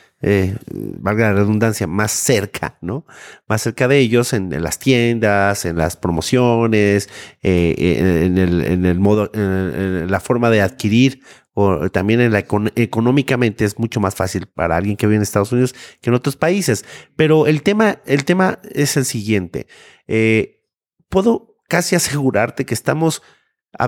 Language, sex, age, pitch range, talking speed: Spanish, male, 40-59, 100-140 Hz, 160 wpm